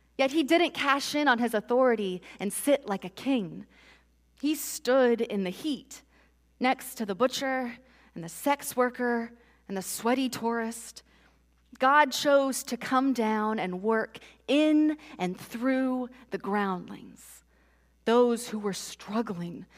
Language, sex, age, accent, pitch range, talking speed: English, female, 30-49, American, 190-255 Hz, 140 wpm